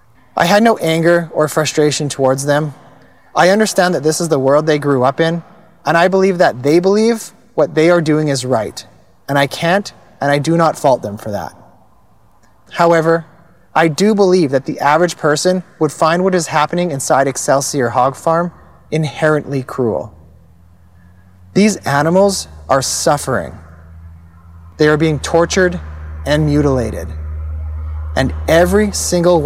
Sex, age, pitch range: male, 30-49, 105-170 Hz